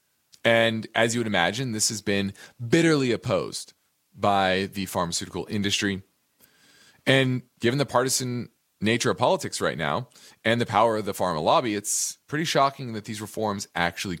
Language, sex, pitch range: English, male, 95-120 Hz